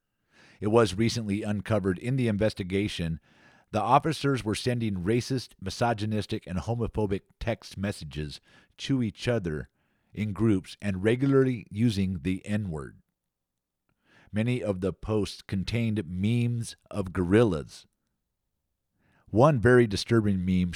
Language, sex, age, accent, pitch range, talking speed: English, male, 50-69, American, 95-115 Hz, 115 wpm